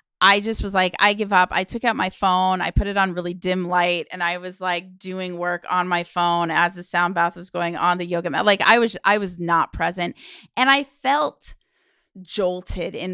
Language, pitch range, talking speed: English, 175-225 Hz, 230 wpm